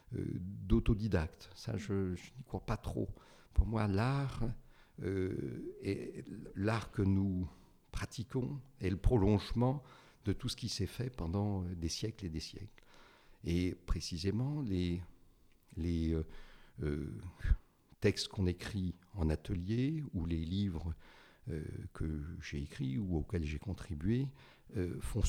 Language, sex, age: French, male, 60-79